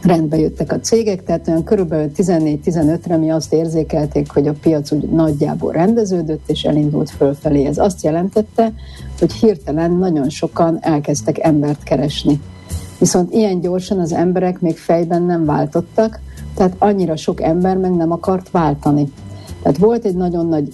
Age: 60-79